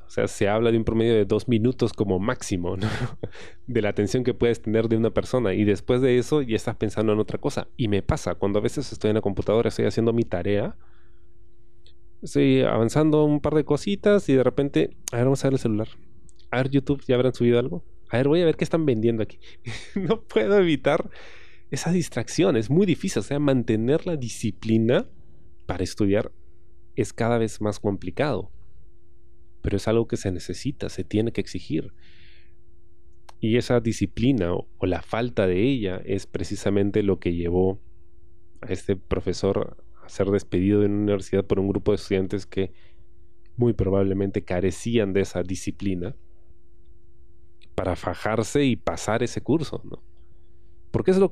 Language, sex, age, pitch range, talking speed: Spanish, male, 30-49, 90-125 Hz, 180 wpm